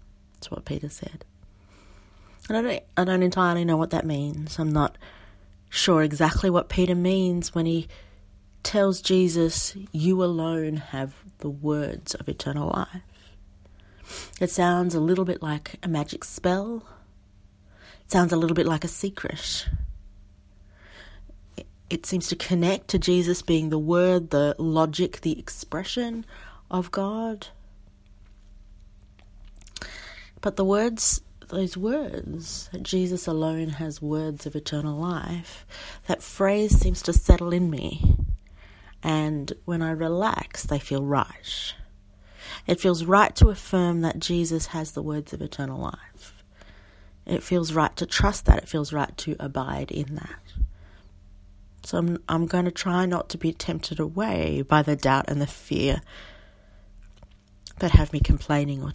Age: 30-49